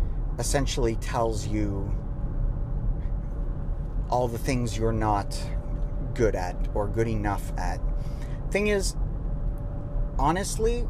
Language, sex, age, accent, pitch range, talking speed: English, male, 40-59, American, 105-130 Hz, 95 wpm